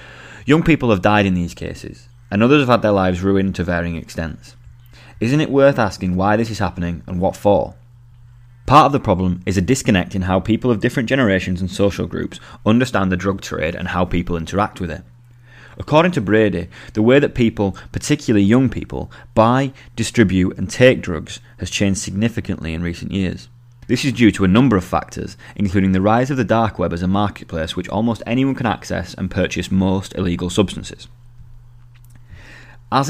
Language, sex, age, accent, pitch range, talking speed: English, male, 30-49, British, 95-120 Hz, 190 wpm